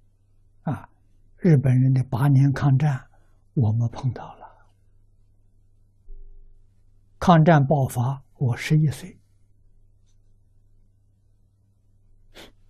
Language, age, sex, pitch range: Chinese, 60-79, male, 100-130 Hz